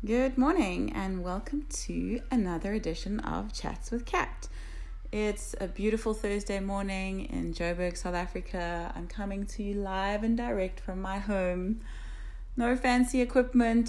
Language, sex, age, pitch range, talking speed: English, female, 30-49, 170-210 Hz, 145 wpm